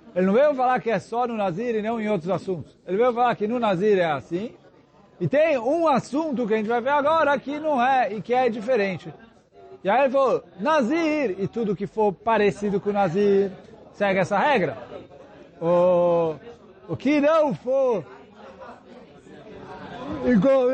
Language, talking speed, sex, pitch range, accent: Portuguese, 170 wpm, male, 190-255 Hz, Brazilian